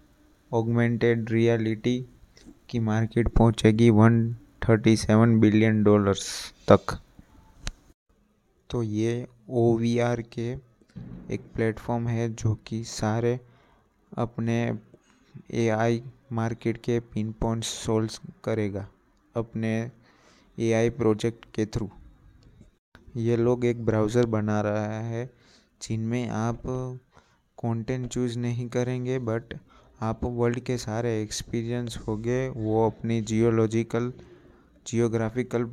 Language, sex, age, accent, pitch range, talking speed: Hindi, male, 20-39, native, 110-120 Hz, 90 wpm